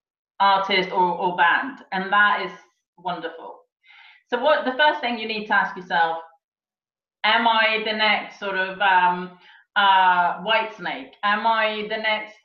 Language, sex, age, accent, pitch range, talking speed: English, female, 30-49, British, 205-250 Hz, 155 wpm